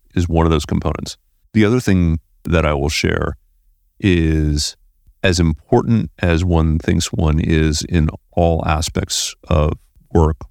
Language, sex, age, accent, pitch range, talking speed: English, male, 40-59, American, 80-95 Hz, 145 wpm